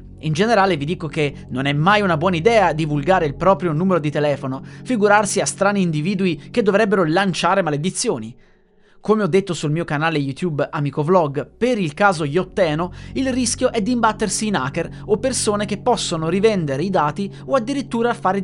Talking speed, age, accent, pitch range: 175 wpm, 20-39, native, 150-210 Hz